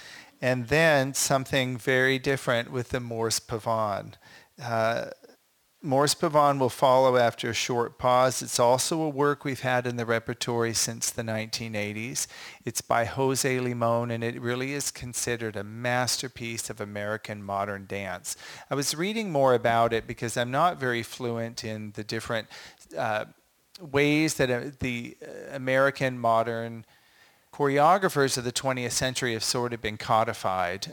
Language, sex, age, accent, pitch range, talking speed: English, male, 40-59, American, 105-125 Hz, 145 wpm